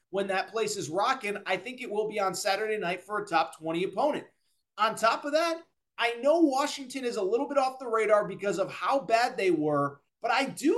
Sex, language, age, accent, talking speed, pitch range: male, English, 30-49, American, 230 wpm, 210-295 Hz